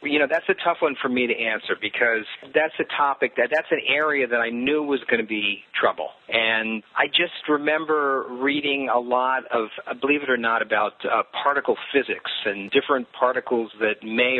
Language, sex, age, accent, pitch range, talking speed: English, male, 40-59, American, 105-125 Hz, 195 wpm